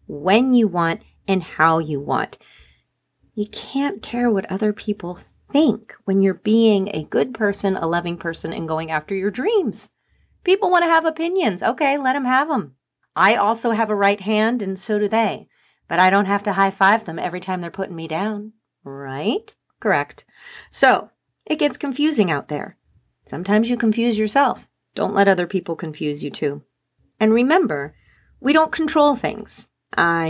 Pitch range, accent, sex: 165-220 Hz, American, female